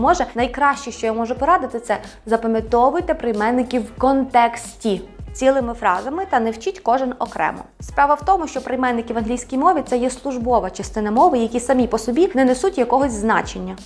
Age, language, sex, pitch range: 20-39, Ukrainian, female, 215-265 Hz